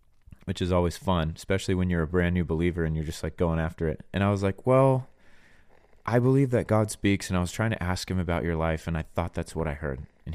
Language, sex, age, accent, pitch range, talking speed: English, male, 30-49, American, 85-115 Hz, 265 wpm